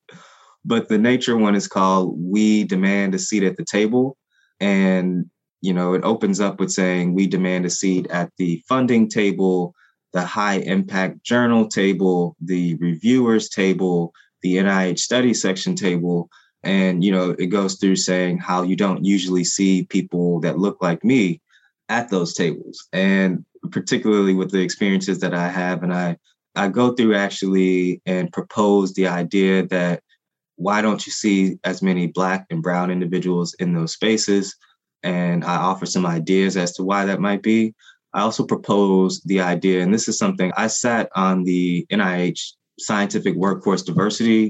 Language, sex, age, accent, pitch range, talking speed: English, male, 20-39, American, 90-100 Hz, 165 wpm